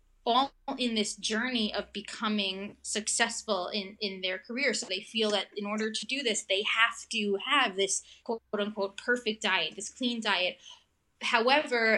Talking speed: 165 wpm